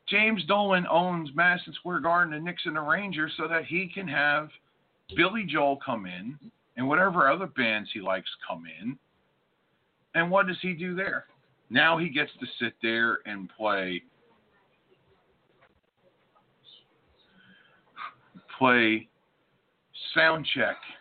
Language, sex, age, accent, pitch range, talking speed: English, male, 50-69, American, 130-200 Hz, 125 wpm